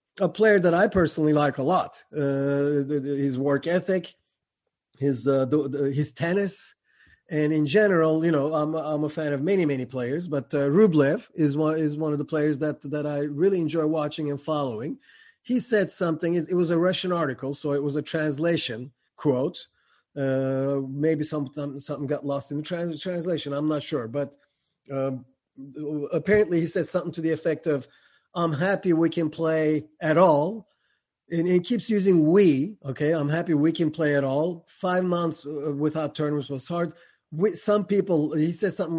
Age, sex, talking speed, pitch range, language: 30-49, male, 185 wpm, 145-180 Hz, English